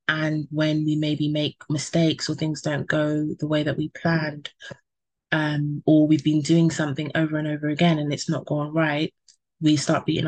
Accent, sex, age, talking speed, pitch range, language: British, female, 20-39, 195 wpm, 150-170 Hz, English